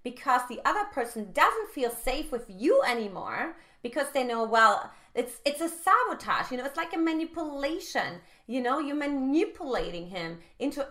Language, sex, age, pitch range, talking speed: English, female, 30-49, 220-315 Hz, 165 wpm